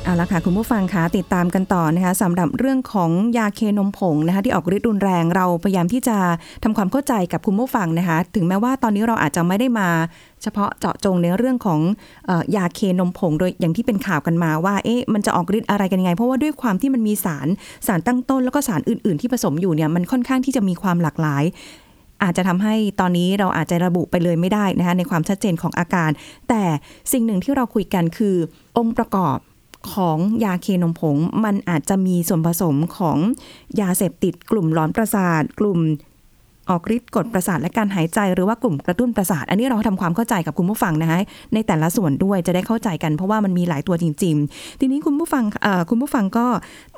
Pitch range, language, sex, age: 175-225 Hz, Thai, female, 20-39